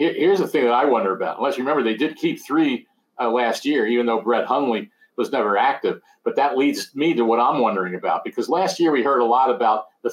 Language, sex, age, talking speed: English, male, 50-69, 250 wpm